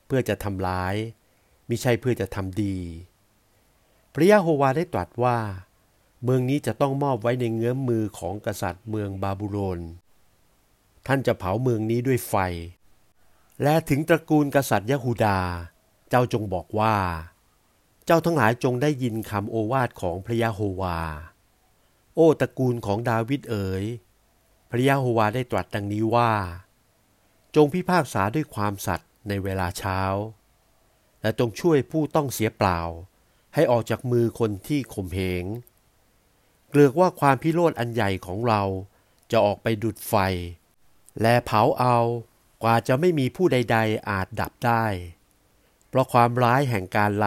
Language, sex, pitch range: Thai, male, 95-125 Hz